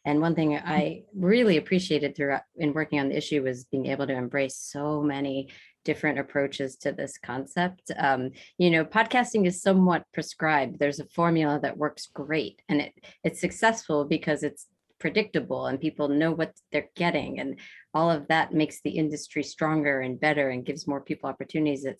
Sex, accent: female, American